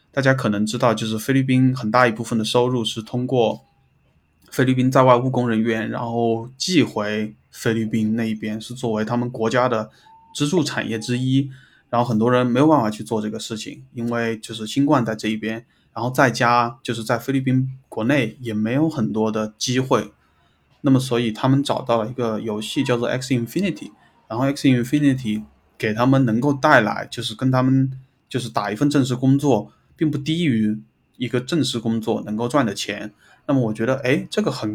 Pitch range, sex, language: 110-130 Hz, male, Chinese